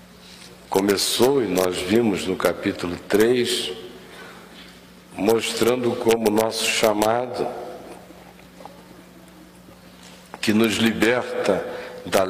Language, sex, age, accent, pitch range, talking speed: Portuguese, male, 60-79, Brazilian, 110-145 Hz, 80 wpm